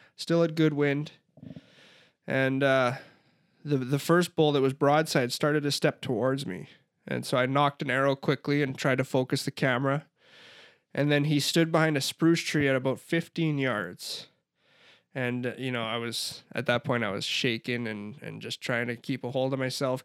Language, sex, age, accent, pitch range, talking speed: English, male, 20-39, American, 130-150 Hz, 195 wpm